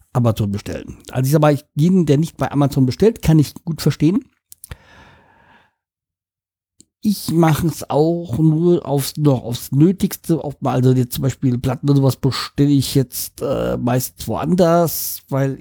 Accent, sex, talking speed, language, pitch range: German, male, 160 wpm, German, 115-145 Hz